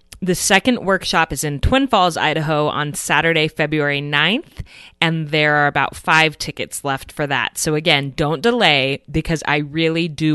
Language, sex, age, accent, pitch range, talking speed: English, female, 20-39, American, 150-190 Hz, 170 wpm